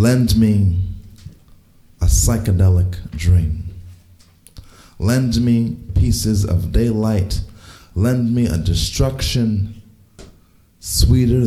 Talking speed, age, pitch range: 80 wpm, 30-49, 85-105 Hz